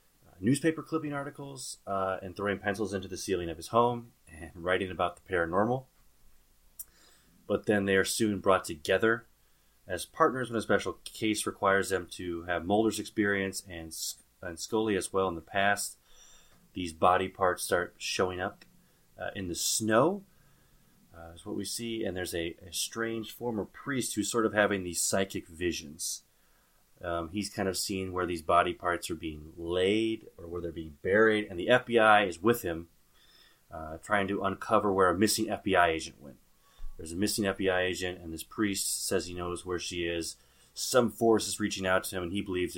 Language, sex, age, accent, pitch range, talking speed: English, male, 30-49, American, 85-110 Hz, 185 wpm